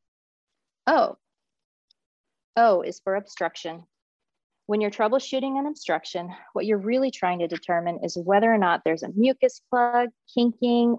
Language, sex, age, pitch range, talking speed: English, female, 30-49, 175-230 Hz, 135 wpm